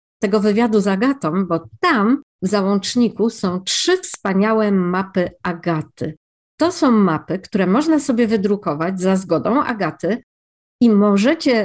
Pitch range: 185-245 Hz